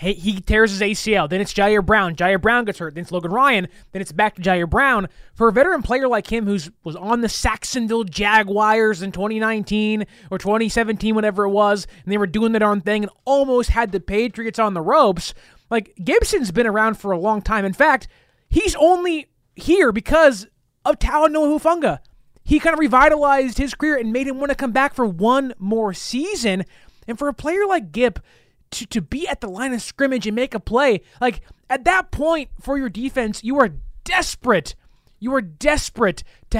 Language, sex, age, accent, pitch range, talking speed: English, male, 20-39, American, 205-270 Hz, 200 wpm